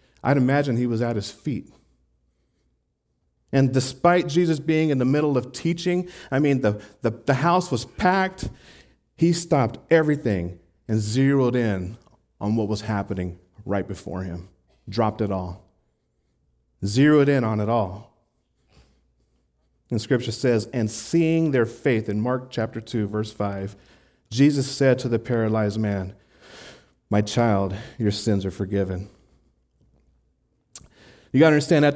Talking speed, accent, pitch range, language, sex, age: 140 wpm, American, 100-145 Hz, English, male, 40-59